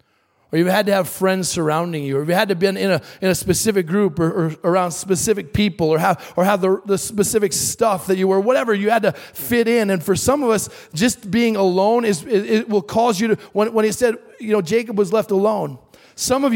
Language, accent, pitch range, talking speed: English, American, 165-215 Hz, 250 wpm